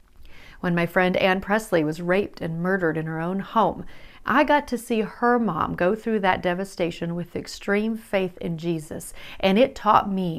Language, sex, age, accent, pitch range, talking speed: English, female, 40-59, American, 175-230 Hz, 185 wpm